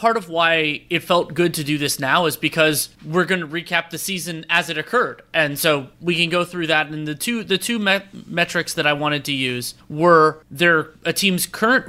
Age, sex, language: 30-49, male, English